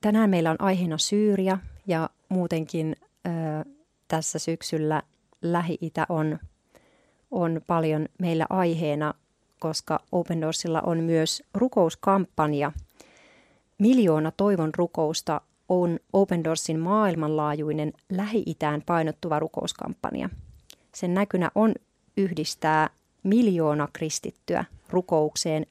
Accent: native